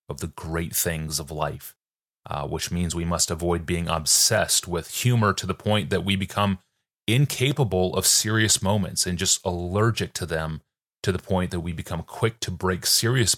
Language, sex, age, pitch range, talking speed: English, male, 30-49, 85-105 Hz, 185 wpm